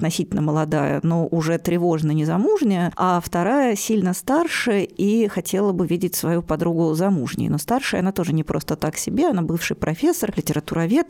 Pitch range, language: 165-200 Hz, Russian